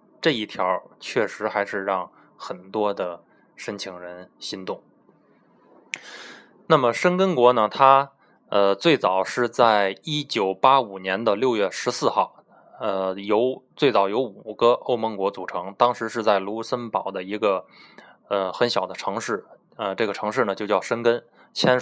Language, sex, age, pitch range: Chinese, male, 20-39, 95-125 Hz